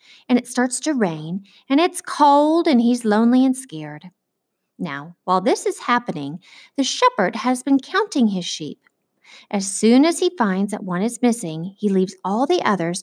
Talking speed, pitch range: 180 wpm, 190-265 Hz